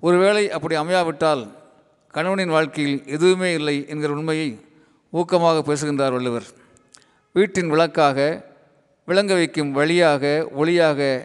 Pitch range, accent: 140-165 Hz, native